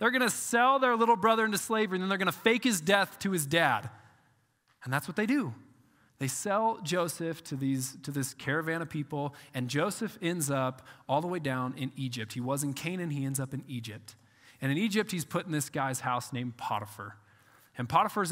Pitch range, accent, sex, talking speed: 135-195 Hz, American, male, 215 wpm